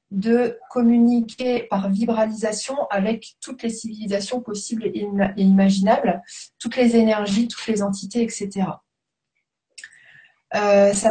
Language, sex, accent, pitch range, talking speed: French, female, French, 200-235 Hz, 110 wpm